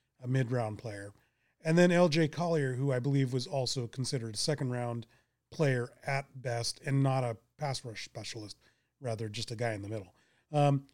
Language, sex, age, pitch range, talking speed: English, male, 30-49, 130-165 Hz, 175 wpm